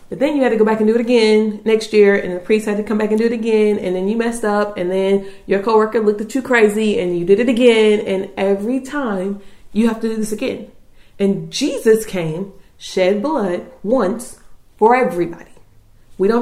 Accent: American